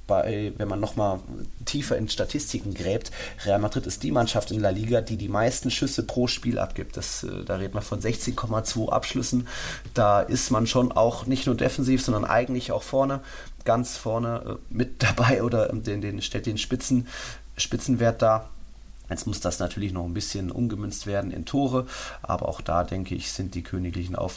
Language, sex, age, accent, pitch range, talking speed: German, male, 30-49, German, 95-120 Hz, 180 wpm